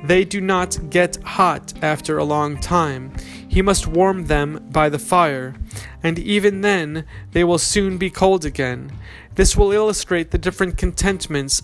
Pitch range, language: 150-185 Hz, English